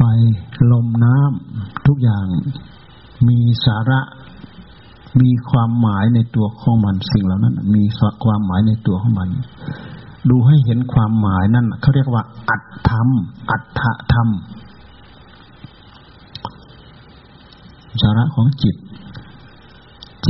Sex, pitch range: male, 110-125 Hz